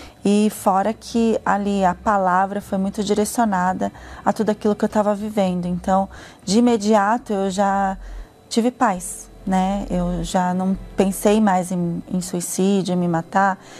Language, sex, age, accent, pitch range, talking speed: Portuguese, female, 20-39, Brazilian, 185-210 Hz, 150 wpm